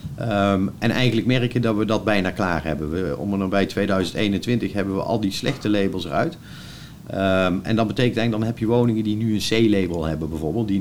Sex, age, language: male, 50-69, Dutch